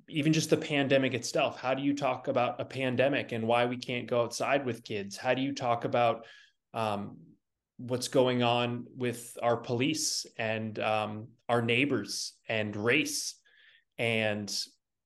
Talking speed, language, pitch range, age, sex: 155 wpm, English, 110-140 Hz, 20-39, male